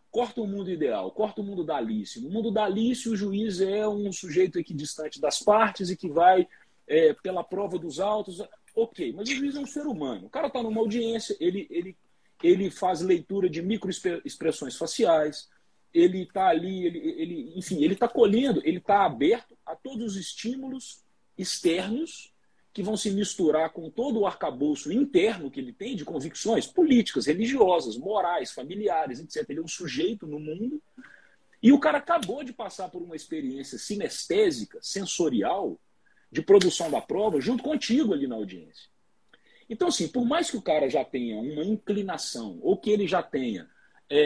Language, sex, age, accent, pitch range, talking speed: Portuguese, male, 40-59, Brazilian, 175-265 Hz, 165 wpm